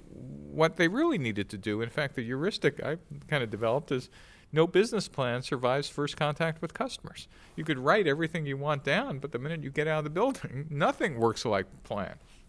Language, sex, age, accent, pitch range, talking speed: English, male, 50-69, American, 110-165 Hz, 205 wpm